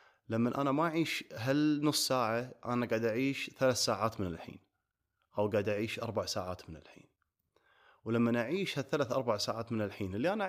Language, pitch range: Arabic, 105-130 Hz